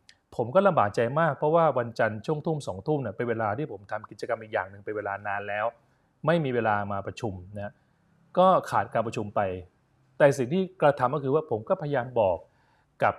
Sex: male